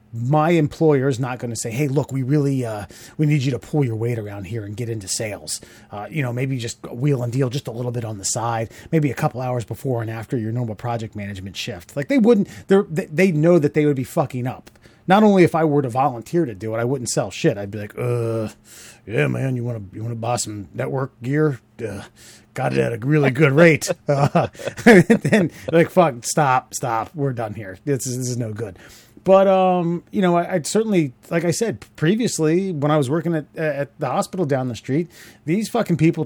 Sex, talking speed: male, 235 wpm